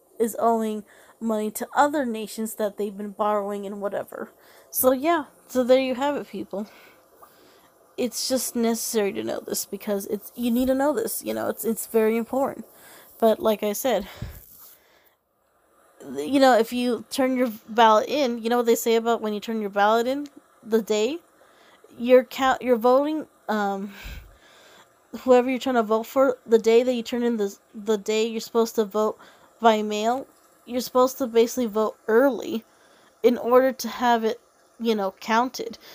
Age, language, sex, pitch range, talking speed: 20-39, English, female, 215-255 Hz, 175 wpm